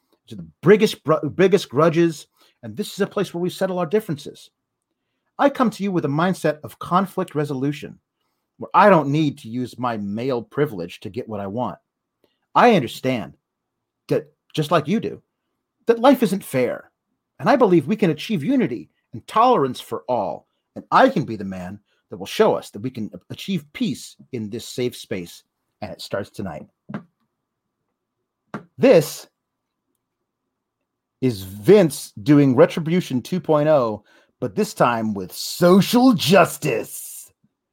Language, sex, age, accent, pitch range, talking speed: English, male, 40-59, American, 120-185 Hz, 155 wpm